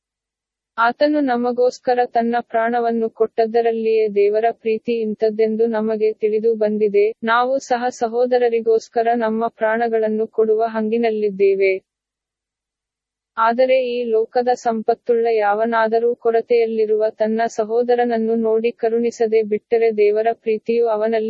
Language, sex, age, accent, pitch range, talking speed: English, female, 20-39, Indian, 220-235 Hz, 90 wpm